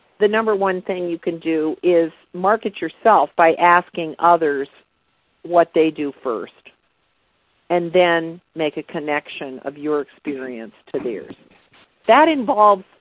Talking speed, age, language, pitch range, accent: 135 wpm, 50-69, English, 165-220 Hz, American